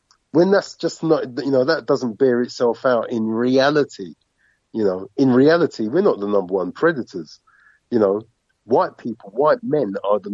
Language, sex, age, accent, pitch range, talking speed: English, male, 50-69, British, 110-140 Hz, 180 wpm